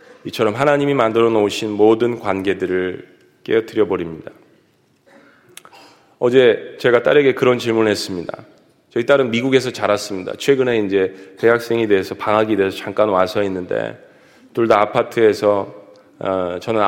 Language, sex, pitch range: Korean, male, 105-140 Hz